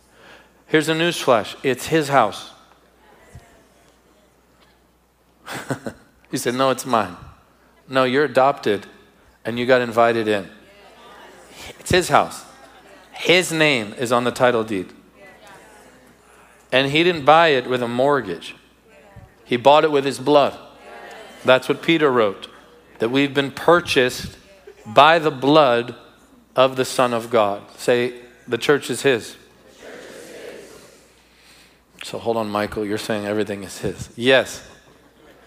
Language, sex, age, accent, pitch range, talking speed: English, male, 40-59, American, 120-160 Hz, 125 wpm